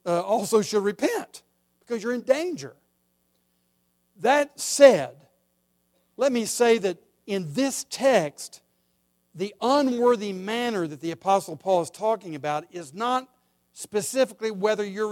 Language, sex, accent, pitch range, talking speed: English, male, American, 160-245 Hz, 125 wpm